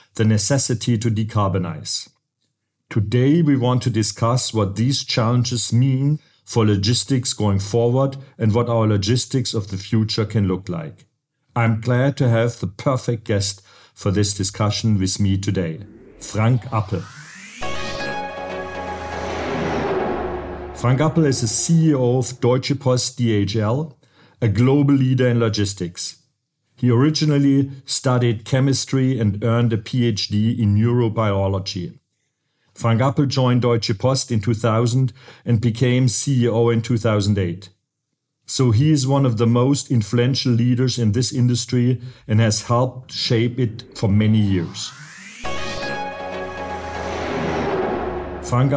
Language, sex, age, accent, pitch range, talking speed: German, male, 50-69, German, 105-130 Hz, 120 wpm